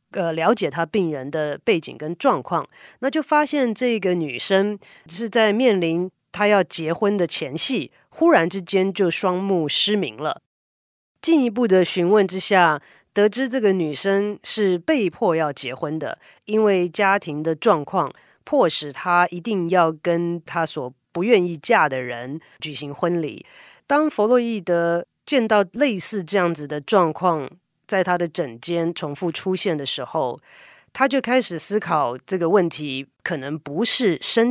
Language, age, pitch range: Chinese, 30-49, 155-205 Hz